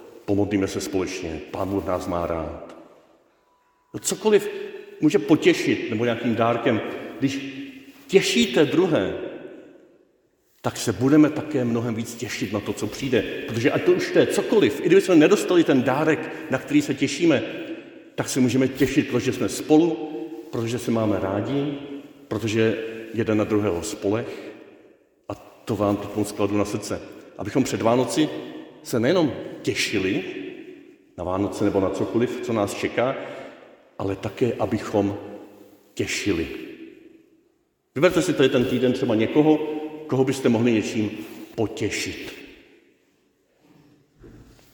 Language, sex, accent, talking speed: Czech, male, native, 130 wpm